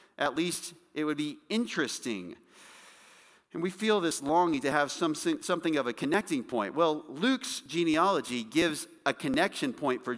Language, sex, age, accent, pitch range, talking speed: English, male, 40-59, American, 135-180 Hz, 160 wpm